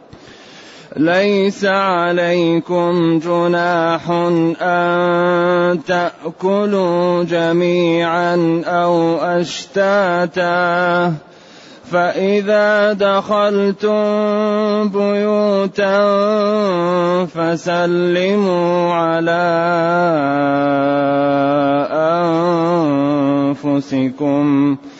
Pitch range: 165-180 Hz